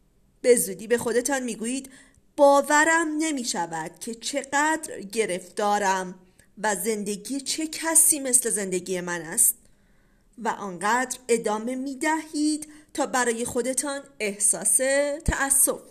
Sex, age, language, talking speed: female, 40-59, Persian, 100 wpm